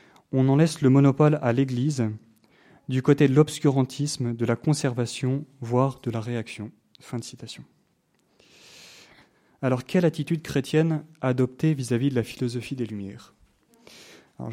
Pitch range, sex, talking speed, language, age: 125-150 Hz, male, 145 wpm, French, 30-49